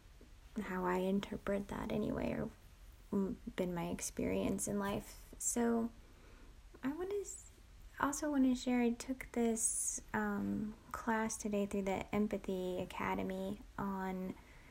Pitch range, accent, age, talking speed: 180-235 Hz, American, 10-29, 120 wpm